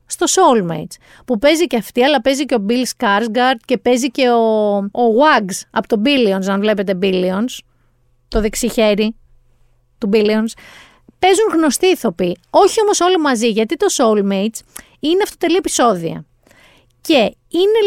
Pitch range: 210-315 Hz